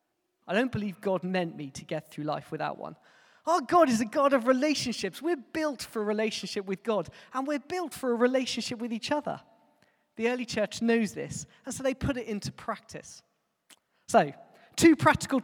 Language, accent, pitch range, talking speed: English, British, 210-295 Hz, 195 wpm